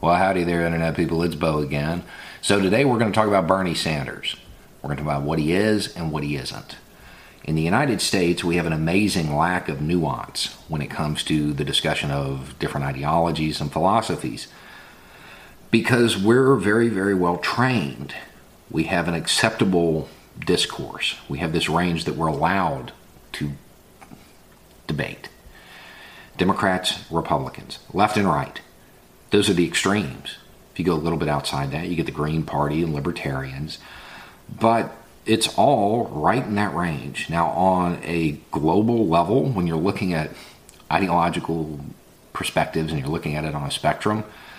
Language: English